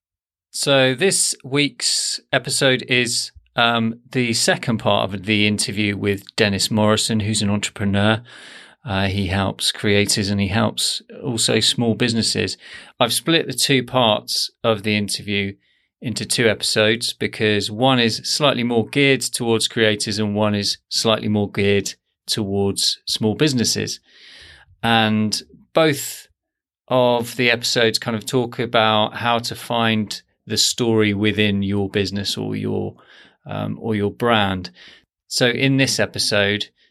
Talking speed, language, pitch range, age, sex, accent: 135 wpm, English, 105-125 Hz, 30-49, male, British